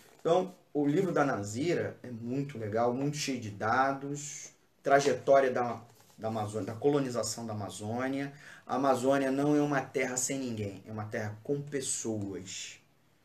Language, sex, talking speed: Portuguese, male, 155 wpm